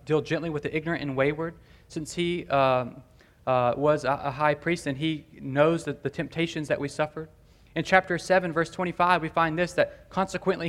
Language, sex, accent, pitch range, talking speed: English, male, American, 140-180 Hz, 195 wpm